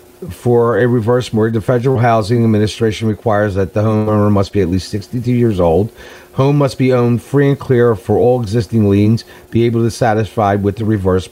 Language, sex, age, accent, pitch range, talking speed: English, male, 50-69, American, 100-130 Hz, 195 wpm